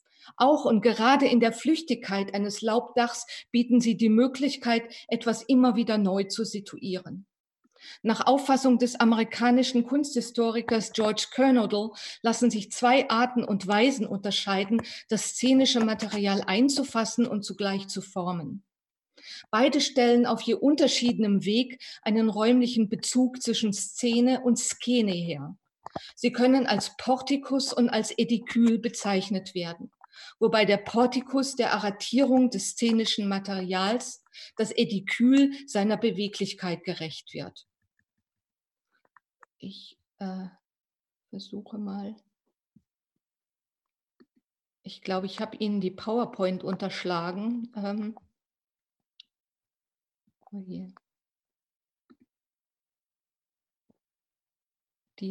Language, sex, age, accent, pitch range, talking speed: German, female, 40-59, German, 200-245 Hz, 100 wpm